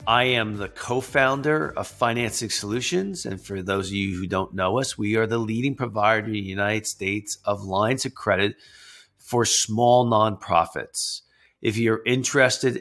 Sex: male